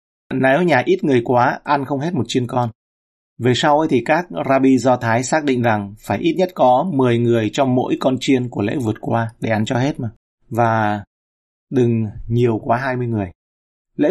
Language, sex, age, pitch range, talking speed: Vietnamese, male, 30-49, 105-140 Hz, 210 wpm